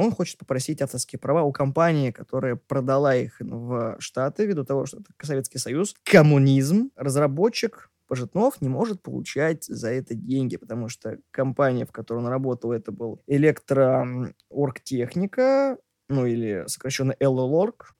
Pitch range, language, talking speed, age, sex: 125-155 Hz, Russian, 135 wpm, 20-39, male